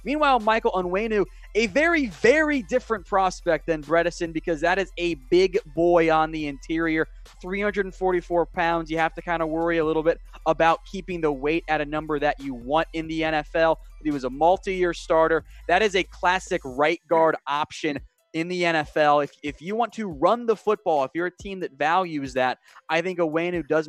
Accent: American